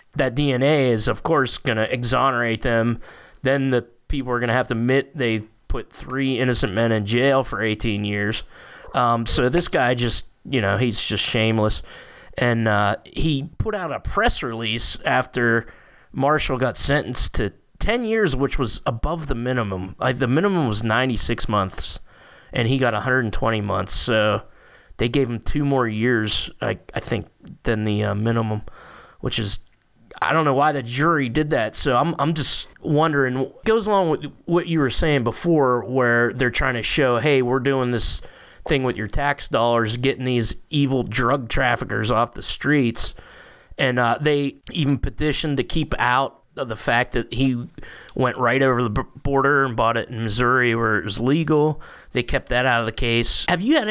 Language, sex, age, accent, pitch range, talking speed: English, male, 20-39, American, 115-140 Hz, 185 wpm